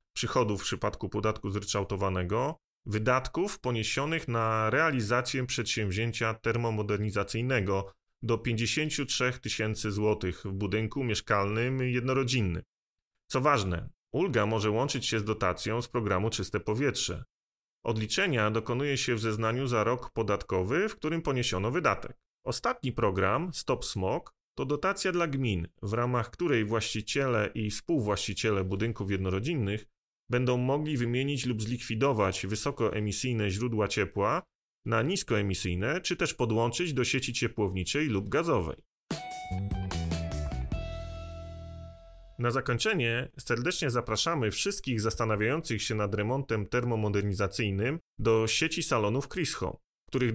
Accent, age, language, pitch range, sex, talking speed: native, 30-49, Polish, 100-125 Hz, male, 110 wpm